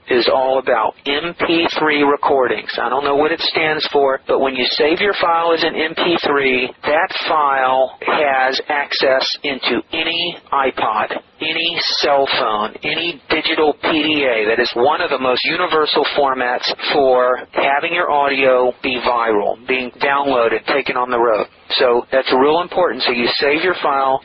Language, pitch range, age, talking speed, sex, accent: English, 135-165 Hz, 40-59, 155 wpm, male, American